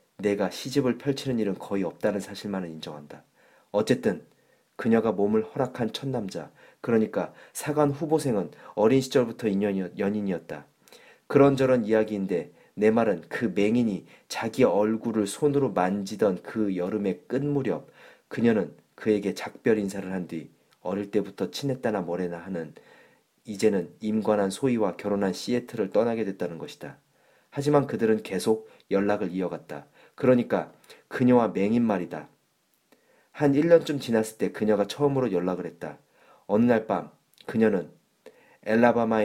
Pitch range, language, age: 100-125 Hz, Korean, 40-59